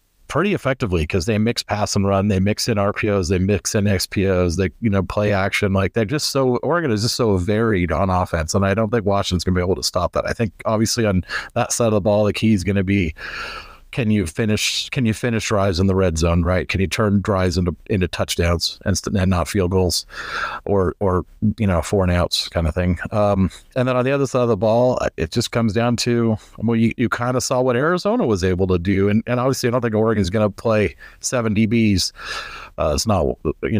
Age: 40-59